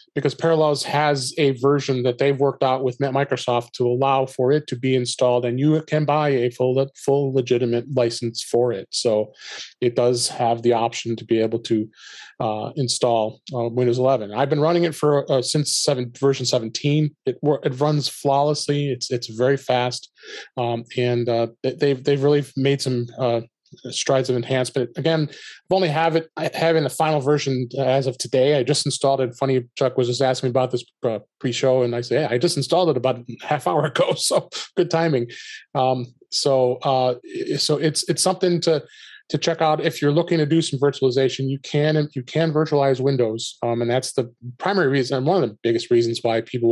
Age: 30-49